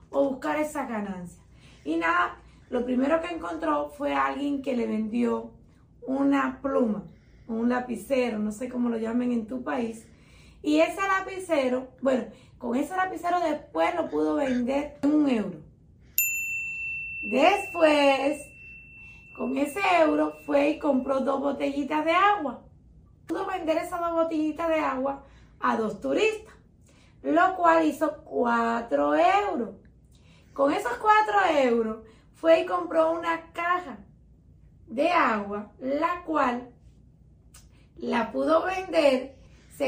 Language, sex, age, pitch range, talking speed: Spanish, female, 30-49, 240-330 Hz, 125 wpm